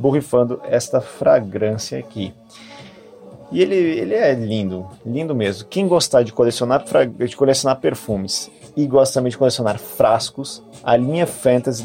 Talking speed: 130 wpm